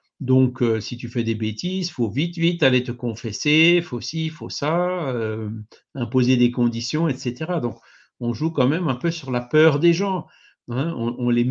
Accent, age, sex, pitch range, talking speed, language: French, 50-69, male, 120-155 Hz, 215 wpm, French